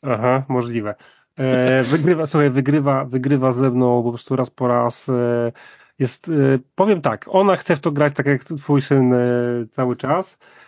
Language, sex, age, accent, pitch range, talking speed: Polish, male, 30-49, native, 130-160 Hz, 175 wpm